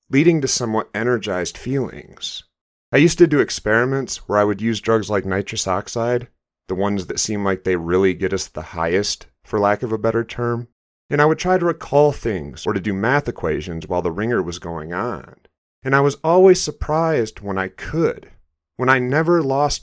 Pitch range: 95-130 Hz